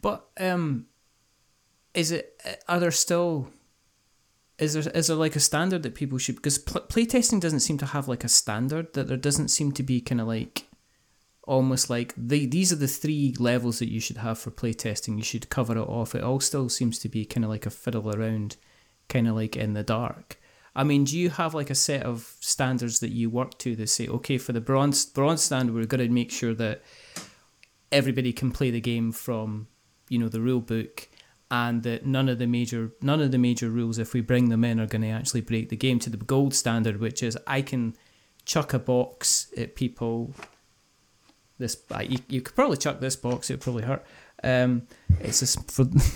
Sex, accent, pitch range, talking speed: male, British, 115-135 Hz, 210 wpm